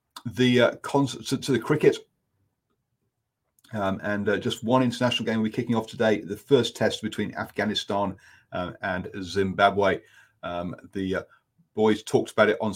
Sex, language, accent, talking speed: male, English, British, 160 wpm